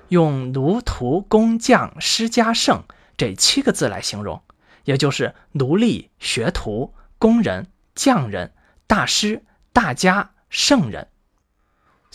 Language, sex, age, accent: Chinese, male, 20-39, native